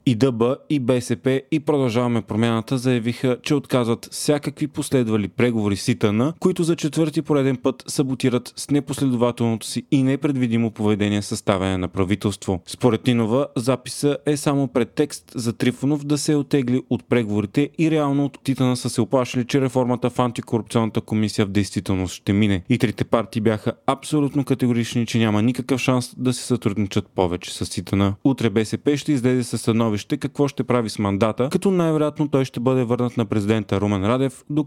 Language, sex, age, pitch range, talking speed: Bulgarian, male, 30-49, 110-135 Hz, 165 wpm